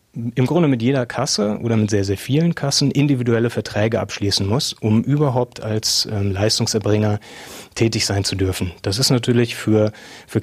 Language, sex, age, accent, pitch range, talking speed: German, male, 30-49, German, 105-130 Hz, 165 wpm